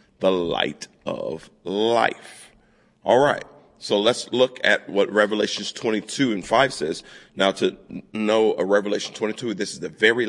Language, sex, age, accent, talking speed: English, male, 40-59, American, 150 wpm